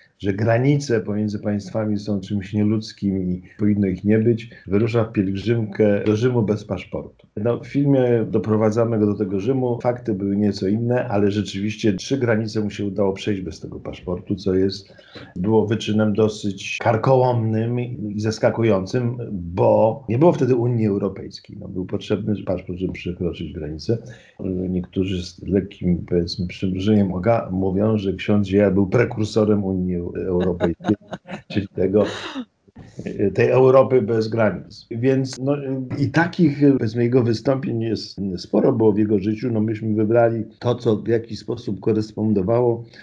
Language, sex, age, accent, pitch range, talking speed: Polish, male, 50-69, native, 95-115 Hz, 145 wpm